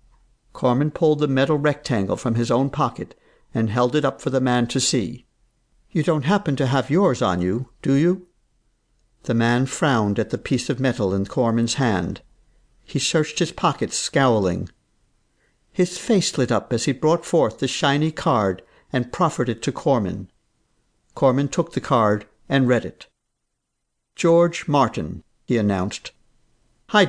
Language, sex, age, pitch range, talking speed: English, male, 60-79, 115-165 Hz, 160 wpm